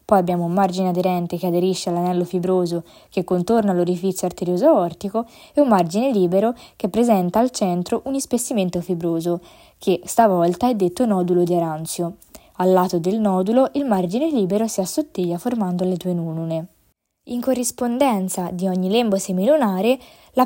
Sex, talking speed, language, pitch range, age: female, 155 wpm, Italian, 180-235 Hz, 20-39